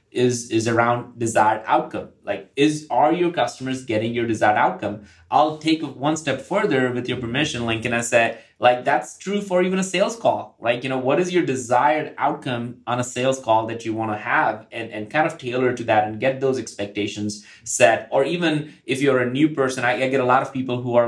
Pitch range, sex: 115-135 Hz, male